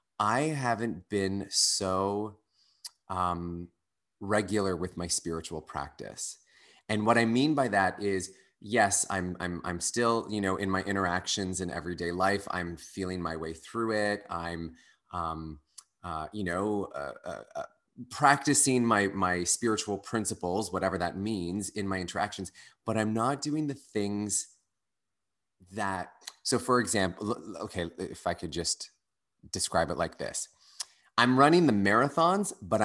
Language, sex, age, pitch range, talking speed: English, male, 30-49, 90-110 Hz, 140 wpm